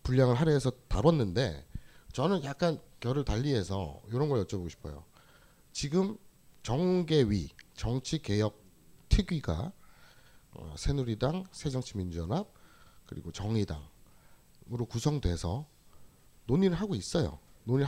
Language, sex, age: Korean, male, 30-49